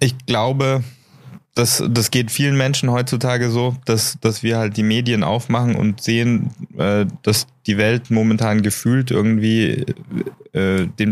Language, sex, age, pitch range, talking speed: German, male, 20-39, 110-125 Hz, 135 wpm